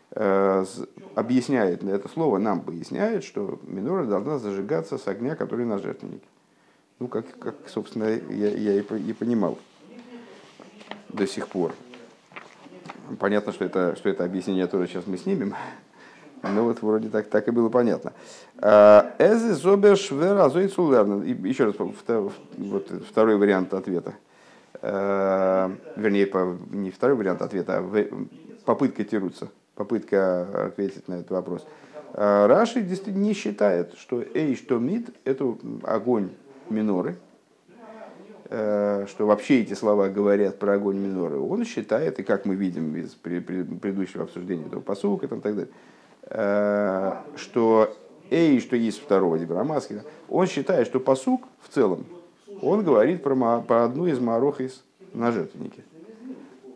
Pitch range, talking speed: 100-130 Hz, 120 wpm